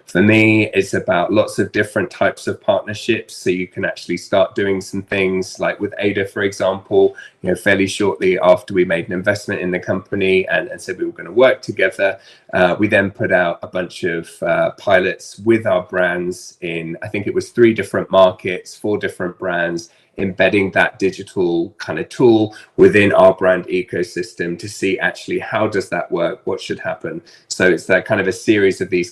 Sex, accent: male, British